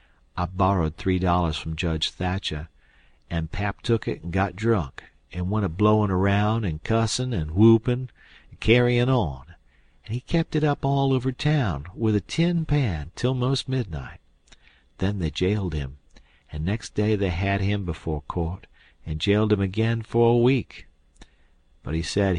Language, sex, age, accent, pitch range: Korean, male, 50-69, American, 80-120 Hz